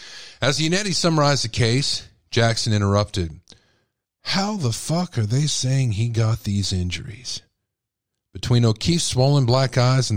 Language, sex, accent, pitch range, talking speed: English, male, American, 100-125 Hz, 135 wpm